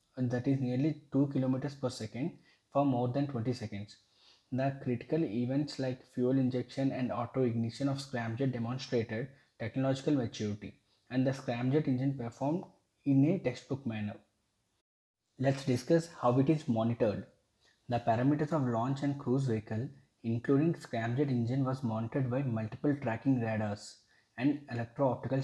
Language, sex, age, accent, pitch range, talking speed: English, male, 20-39, Indian, 115-135 Hz, 135 wpm